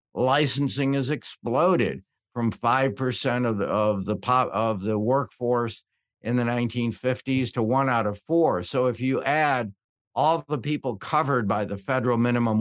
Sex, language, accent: male, English, American